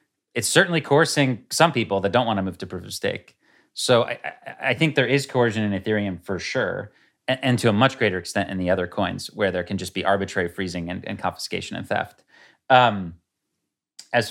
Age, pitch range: 30-49, 100-125 Hz